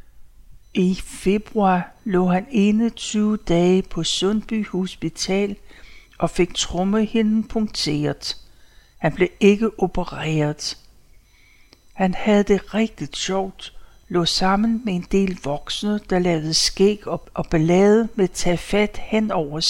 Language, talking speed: Danish, 115 wpm